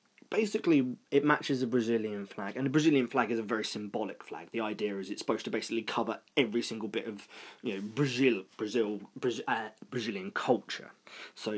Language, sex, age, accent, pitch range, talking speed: English, male, 20-39, British, 105-140 Hz, 185 wpm